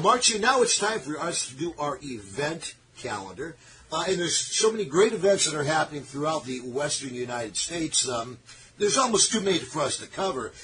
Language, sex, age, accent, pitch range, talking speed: English, male, 50-69, American, 140-185 Hz, 205 wpm